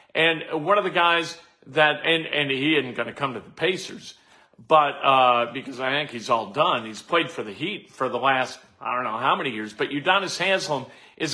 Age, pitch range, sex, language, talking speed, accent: 40-59, 135-165 Hz, male, English, 220 wpm, American